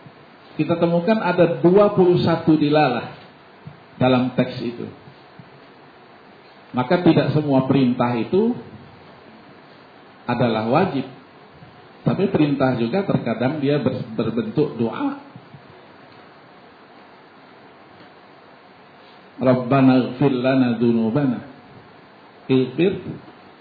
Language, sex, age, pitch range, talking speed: Indonesian, male, 50-69, 125-175 Hz, 60 wpm